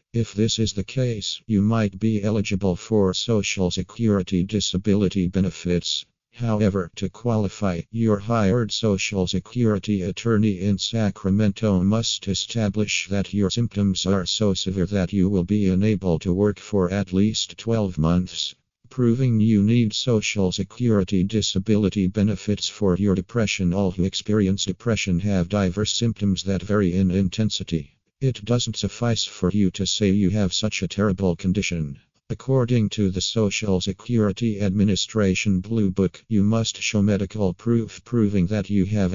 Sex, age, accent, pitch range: male, 50-69, American, 95-110 Hz